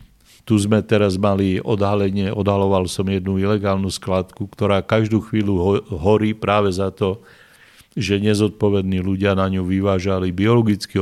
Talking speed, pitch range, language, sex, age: 130 wpm, 100-110 Hz, Slovak, male, 50-69